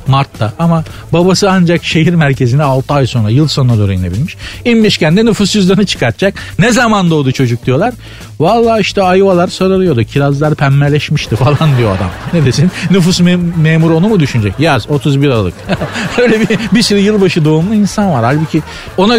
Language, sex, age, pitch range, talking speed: Turkish, male, 50-69, 115-170 Hz, 165 wpm